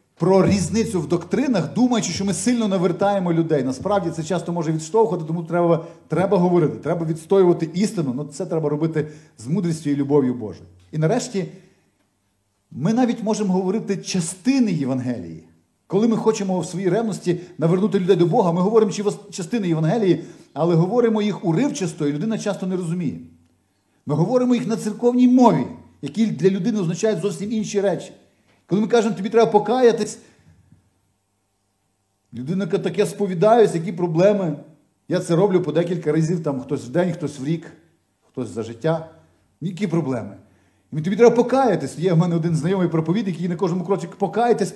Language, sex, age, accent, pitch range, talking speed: Ukrainian, male, 40-59, native, 140-200 Hz, 160 wpm